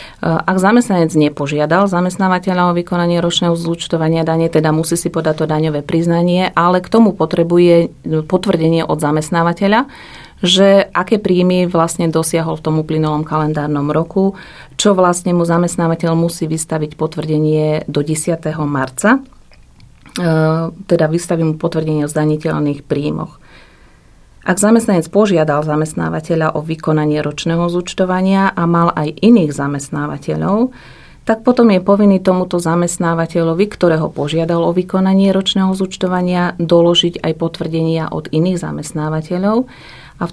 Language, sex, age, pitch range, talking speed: Slovak, female, 40-59, 155-180 Hz, 125 wpm